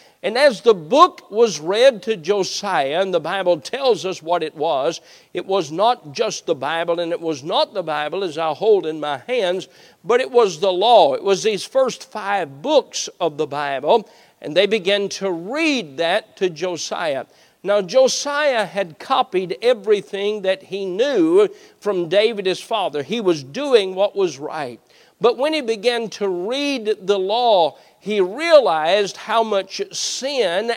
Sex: male